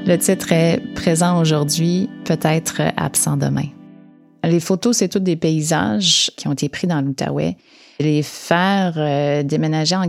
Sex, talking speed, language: female, 160 wpm, French